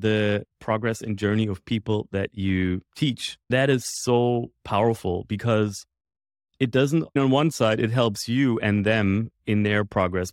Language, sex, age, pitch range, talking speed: English, male, 30-49, 95-115 Hz, 155 wpm